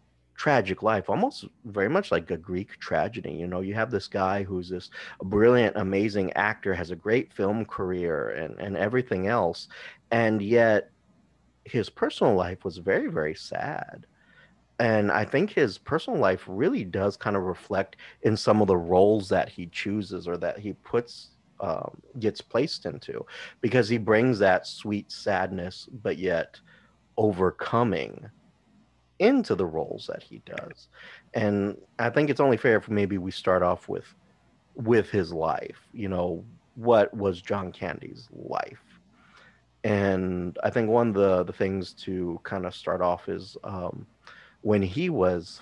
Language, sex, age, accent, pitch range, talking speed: English, male, 30-49, American, 90-110 Hz, 160 wpm